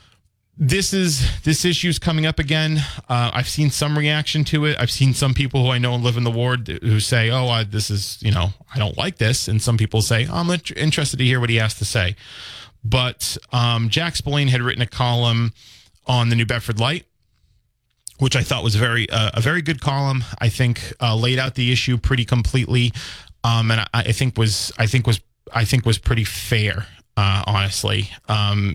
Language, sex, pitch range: English, male, 110-135 Hz